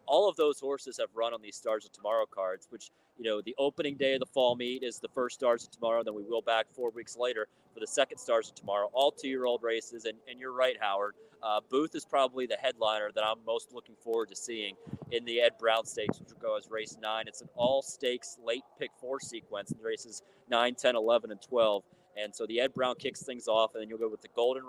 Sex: male